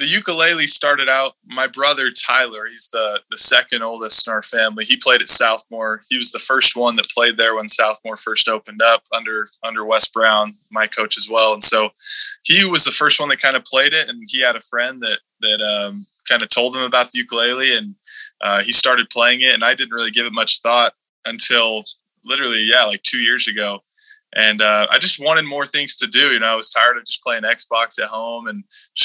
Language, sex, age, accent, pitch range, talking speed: English, male, 20-39, American, 110-155 Hz, 225 wpm